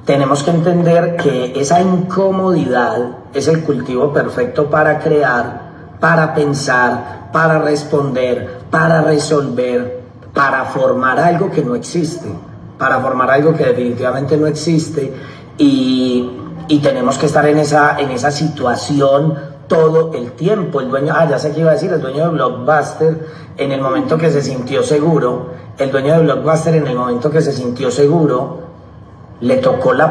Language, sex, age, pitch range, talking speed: Spanish, male, 40-59, 130-160 Hz, 155 wpm